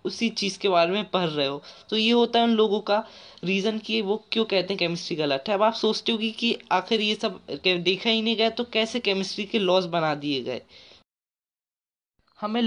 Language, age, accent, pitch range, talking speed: Hindi, 20-39, native, 175-215 Hz, 215 wpm